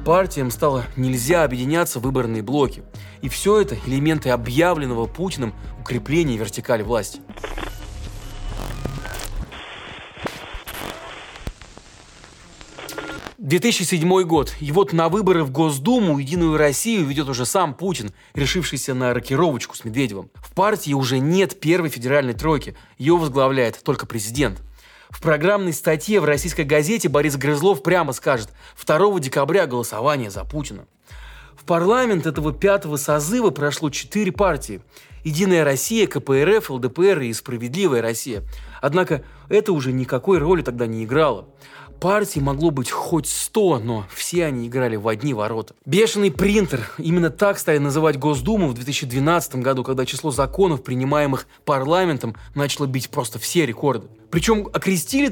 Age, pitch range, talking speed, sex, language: 30-49, 125-175 Hz, 125 wpm, male, Russian